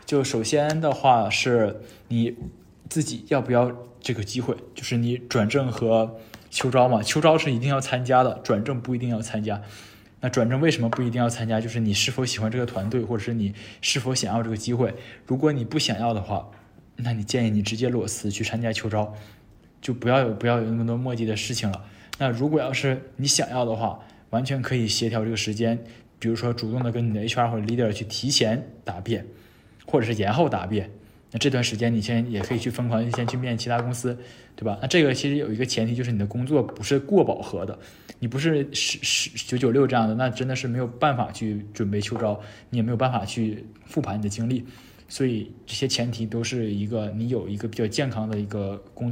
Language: Chinese